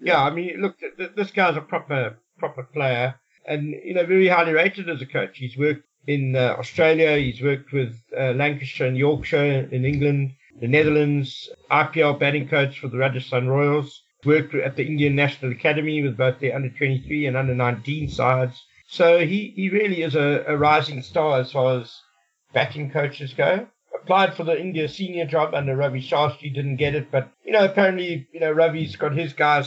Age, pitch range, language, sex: 60-79, 130-160 Hz, English, male